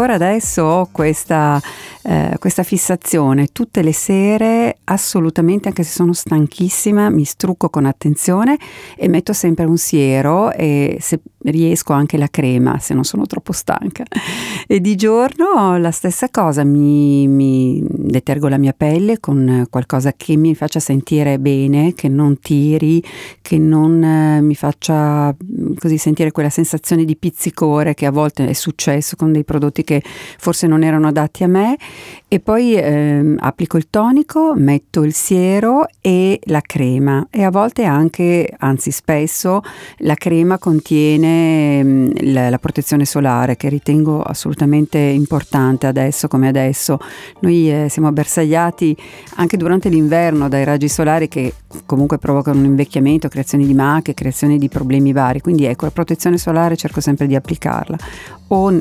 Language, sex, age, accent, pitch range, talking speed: Italian, female, 50-69, native, 145-175 Hz, 150 wpm